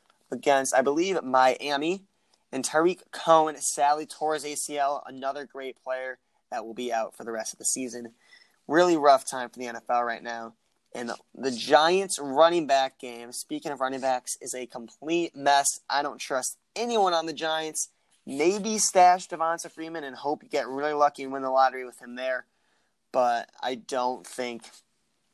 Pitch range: 125-165 Hz